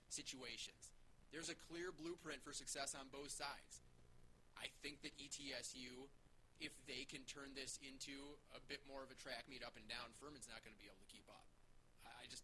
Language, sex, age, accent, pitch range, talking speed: English, male, 30-49, American, 125-145 Hz, 205 wpm